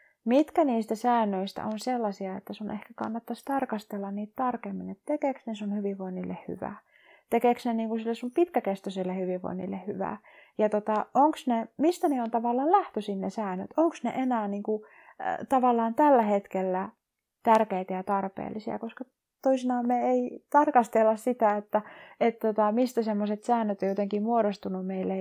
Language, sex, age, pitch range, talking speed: Finnish, female, 30-49, 195-245 Hz, 150 wpm